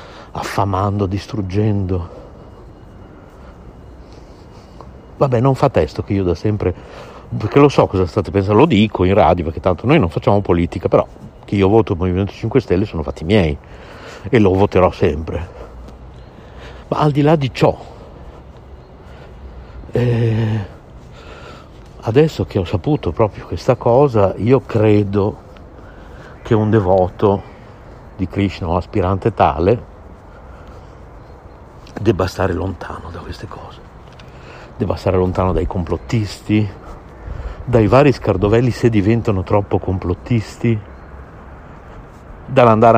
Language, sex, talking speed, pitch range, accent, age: Italian, male, 115 wpm, 90-110 Hz, native, 60-79